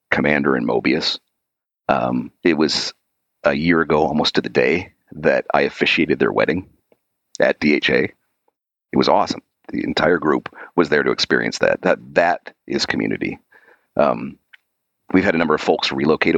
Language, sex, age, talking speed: English, male, 40-59, 160 wpm